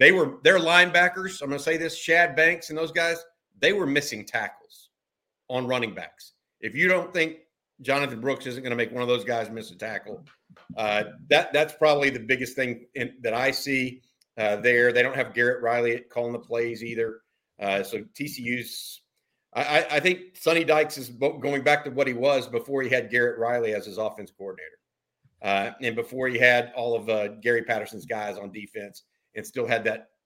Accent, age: American, 50-69